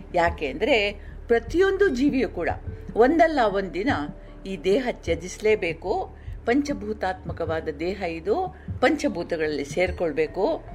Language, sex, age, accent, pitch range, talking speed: Kannada, female, 50-69, native, 170-275 Hz, 90 wpm